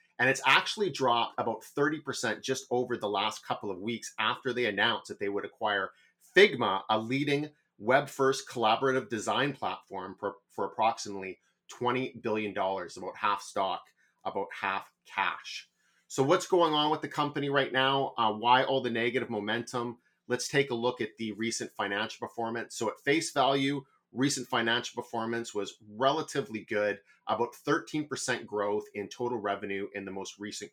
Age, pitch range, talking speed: 30-49, 110-130 Hz, 160 wpm